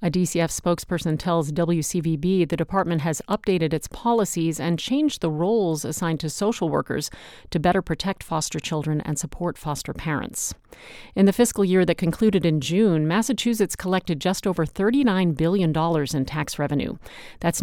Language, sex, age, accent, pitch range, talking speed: English, female, 40-59, American, 155-195 Hz, 155 wpm